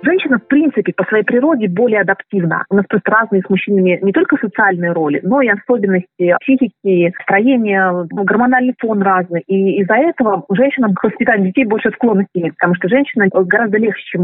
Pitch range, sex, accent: 180-225 Hz, female, native